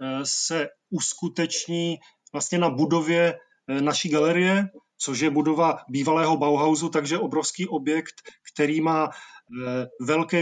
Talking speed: 105 wpm